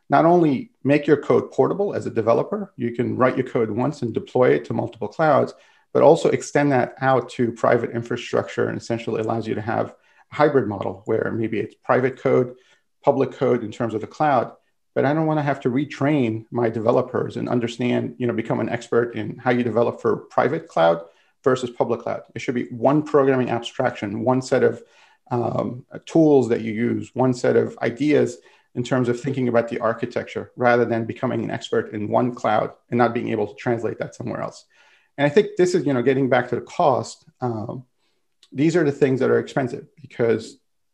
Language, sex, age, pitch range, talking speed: Italian, male, 40-59, 115-135 Hz, 205 wpm